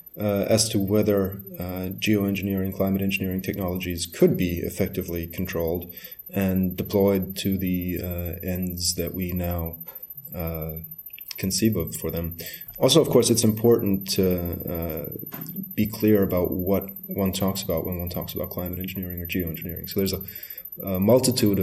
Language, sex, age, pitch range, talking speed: English, male, 30-49, 90-110 Hz, 150 wpm